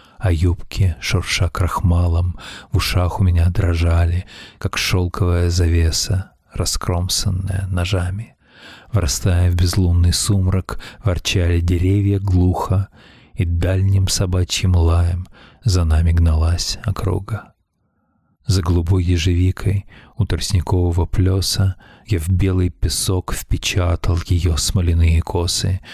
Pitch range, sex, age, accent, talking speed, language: 85-95 Hz, male, 40-59, native, 100 wpm, Russian